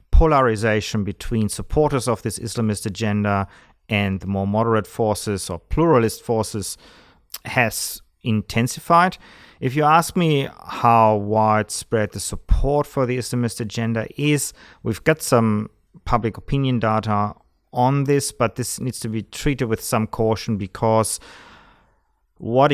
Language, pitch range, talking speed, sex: English, 100-120 Hz, 130 wpm, male